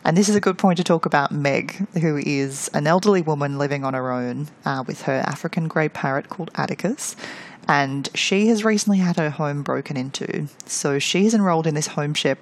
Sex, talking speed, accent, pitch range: female, 210 wpm, Australian, 140-180 Hz